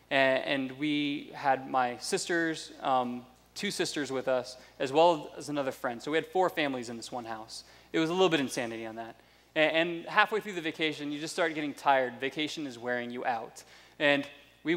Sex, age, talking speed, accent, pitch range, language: male, 20-39, 205 wpm, American, 130-155 Hz, English